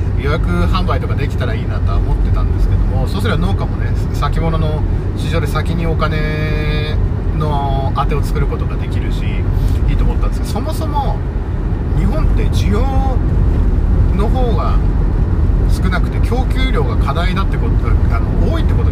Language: Japanese